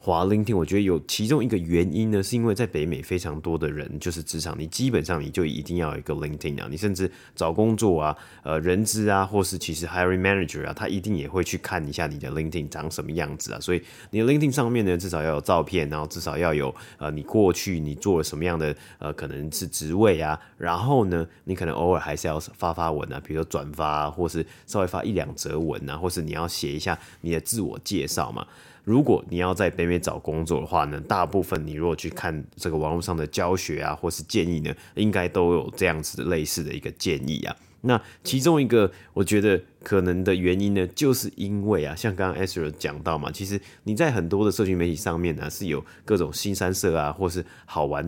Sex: male